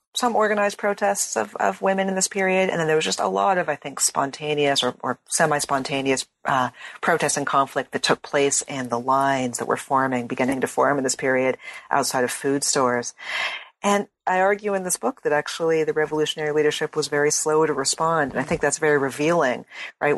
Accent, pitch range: American, 130-155 Hz